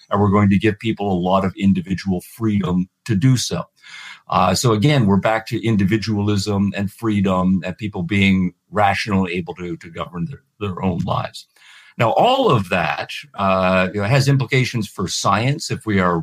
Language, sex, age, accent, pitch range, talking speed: English, male, 50-69, American, 95-115 Hz, 175 wpm